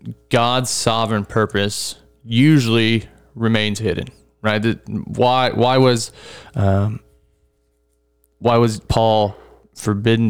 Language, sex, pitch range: English, male, 95-110 Hz